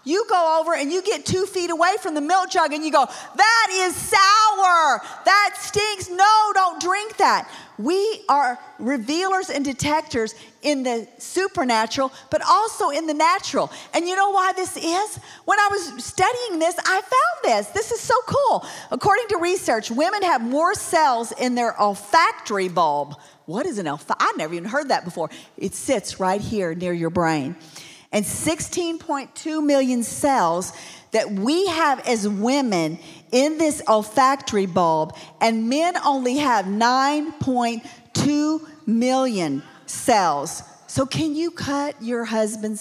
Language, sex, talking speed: English, female, 155 wpm